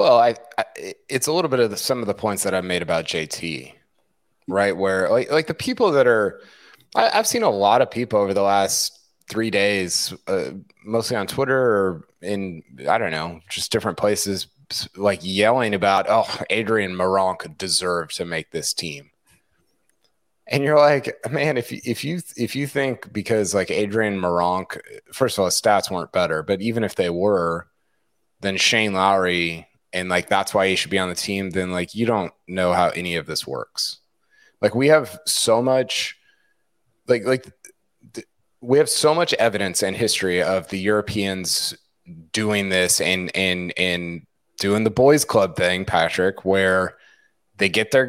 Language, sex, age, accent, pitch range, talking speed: English, male, 30-49, American, 90-115 Hz, 180 wpm